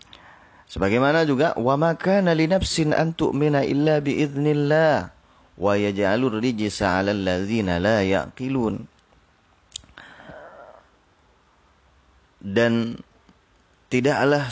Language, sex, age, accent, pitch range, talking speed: Indonesian, male, 30-49, native, 95-135 Hz, 45 wpm